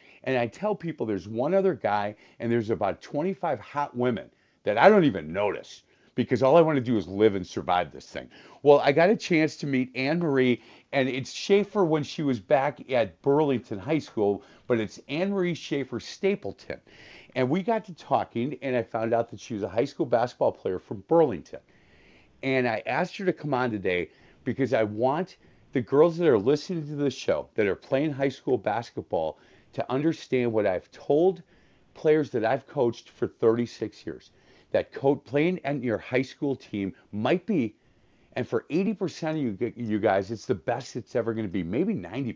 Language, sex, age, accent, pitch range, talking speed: English, male, 50-69, American, 115-155 Hz, 195 wpm